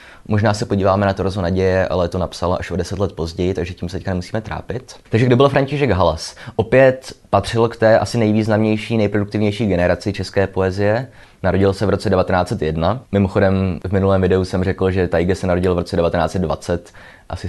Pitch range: 90-110 Hz